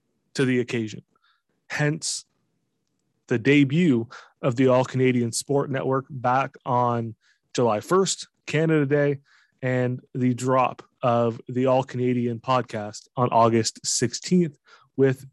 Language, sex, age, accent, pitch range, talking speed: English, male, 20-39, American, 120-140 Hz, 110 wpm